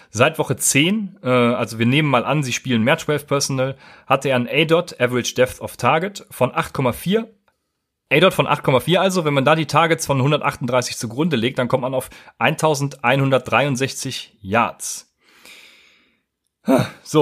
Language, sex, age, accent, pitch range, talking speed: German, male, 30-49, German, 120-150 Hz, 150 wpm